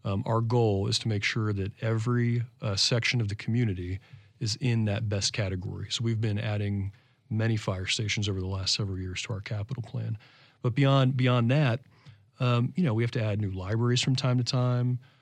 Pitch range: 110-130 Hz